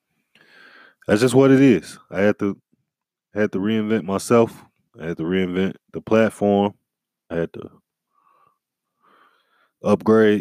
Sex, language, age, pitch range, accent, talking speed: male, English, 20-39, 95-115 Hz, American, 125 wpm